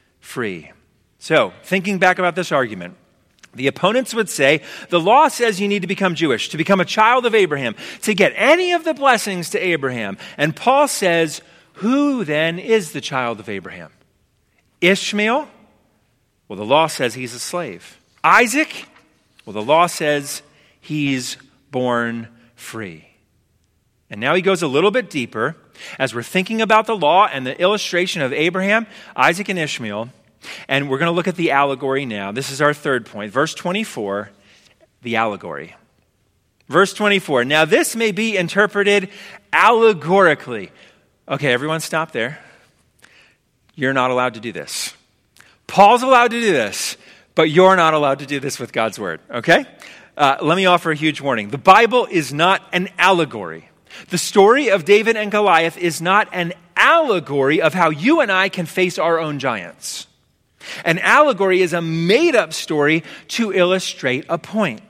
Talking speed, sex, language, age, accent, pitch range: 165 wpm, male, English, 40-59, American, 135-205 Hz